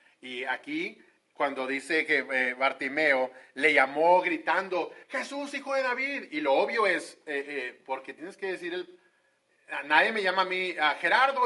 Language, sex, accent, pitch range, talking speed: Spanish, male, Mexican, 155-230 Hz, 175 wpm